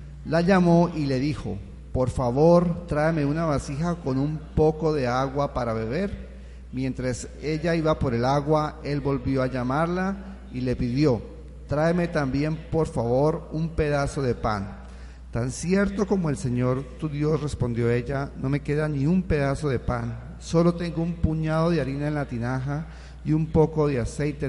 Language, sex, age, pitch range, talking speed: Spanish, male, 40-59, 115-155 Hz, 170 wpm